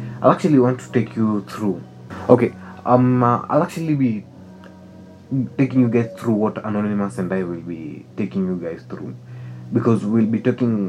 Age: 20-39